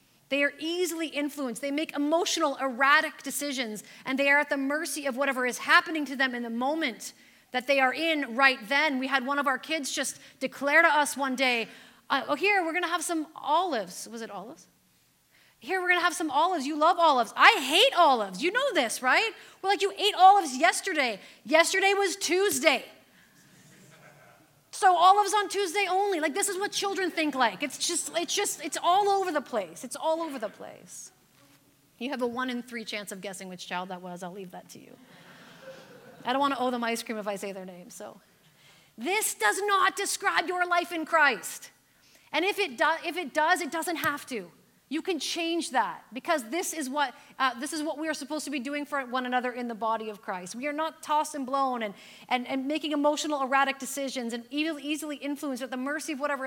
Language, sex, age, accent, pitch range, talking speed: English, female, 30-49, American, 250-335 Hz, 220 wpm